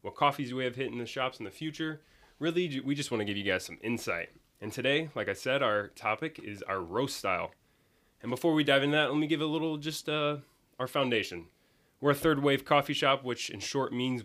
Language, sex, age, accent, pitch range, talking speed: English, male, 20-39, American, 110-145 Hz, 245 wpm